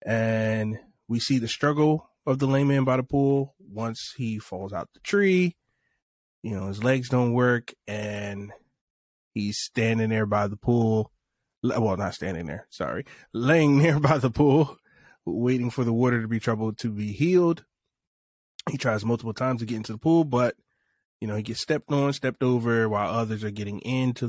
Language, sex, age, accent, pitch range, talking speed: English, male, 20-39, American, 110-135 Hz, 180 wpm